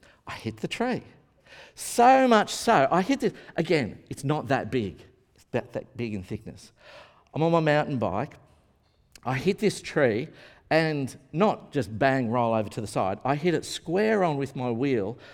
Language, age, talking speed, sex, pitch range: English, 50-69, 185 wpm, male, 130-210 Hz